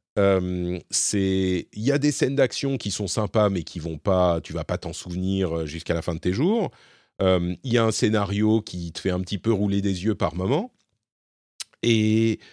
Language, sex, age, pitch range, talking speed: French, male, 40-59, 90-120 Hz, 210 wpm